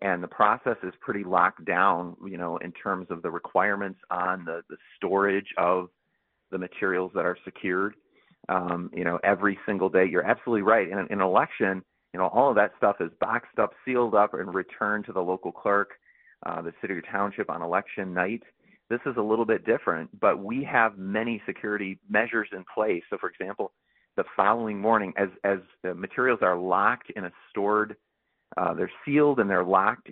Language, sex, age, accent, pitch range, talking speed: English, male, 40-59, American, 90-105 Hz, 190 wpm